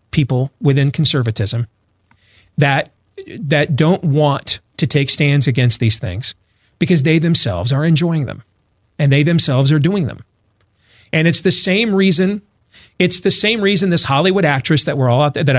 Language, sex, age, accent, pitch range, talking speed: English, male, 40-59, American, 135-180 Hz, 165 wpm